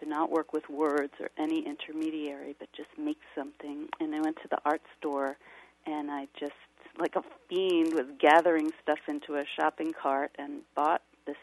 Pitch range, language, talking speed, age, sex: 150-200 Hz, English, 185 wpm, 40-59, female